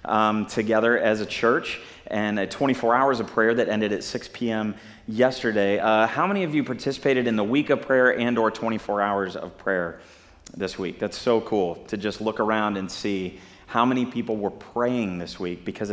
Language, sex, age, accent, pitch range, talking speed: English, male, 30-49, American, 100-120 Hz, 200 wpm